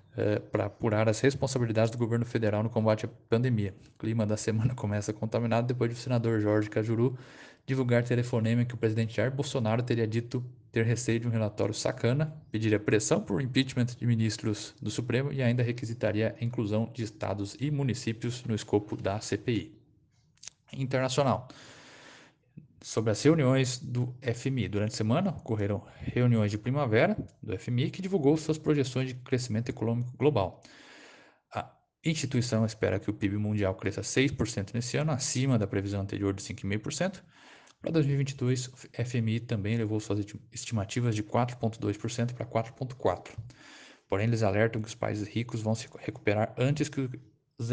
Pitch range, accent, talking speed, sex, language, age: 110-130 Hz, Brazilian, 155 wpm, male, Portuguese, 20-39